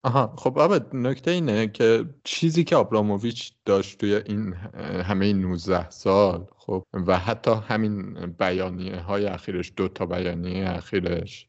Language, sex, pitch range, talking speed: Persian, male, 90-110 Hz, 135 wpm